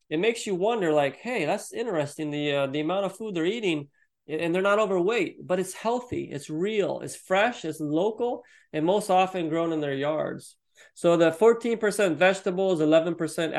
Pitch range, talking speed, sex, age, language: 155-200 Hz, 180 wpm, male, 30-49, English